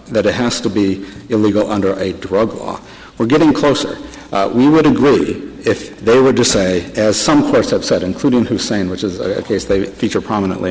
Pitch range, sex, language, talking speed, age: 100-115 Hz, male, English, 200 wpm, 60-79